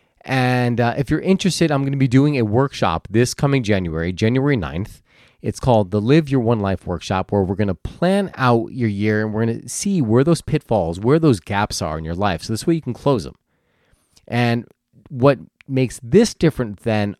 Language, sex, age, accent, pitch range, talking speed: English, male, 30-49, American, 105-140 Hz, 215 wpm